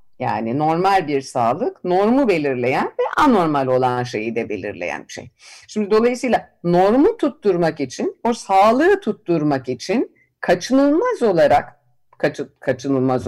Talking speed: 120 wpm